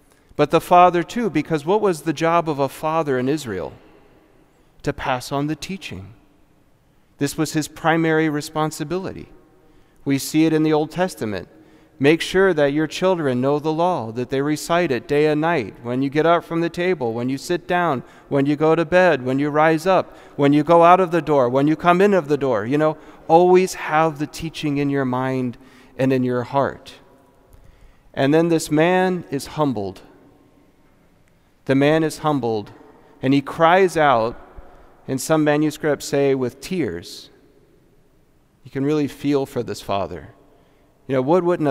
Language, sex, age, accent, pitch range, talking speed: English, male, 40-59, American, 130-160 Hz, 180 wpm